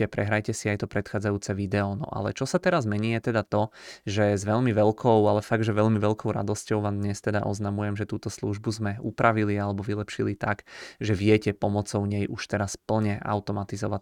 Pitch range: 100-110 Hz